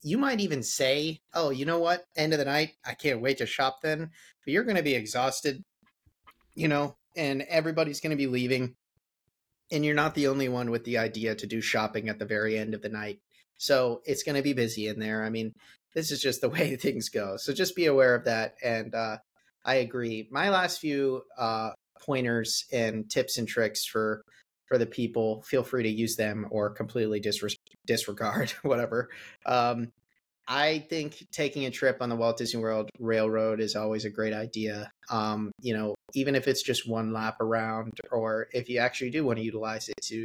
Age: 30-49